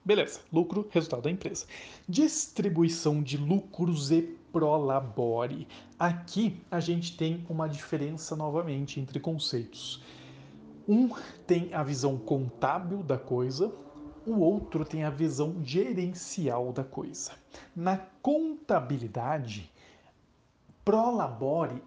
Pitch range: 140-190 Hz